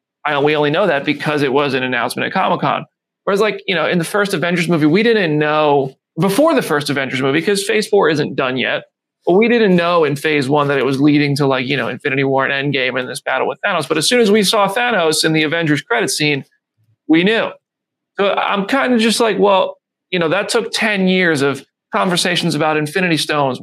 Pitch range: 150-195 Hz